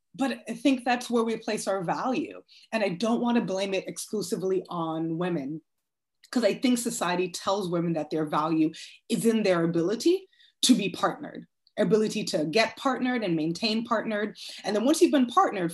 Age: 20-39